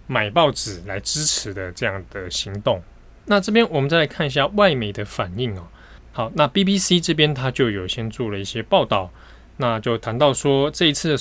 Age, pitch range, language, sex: 20-39, 100-145 Hz, Chinese, male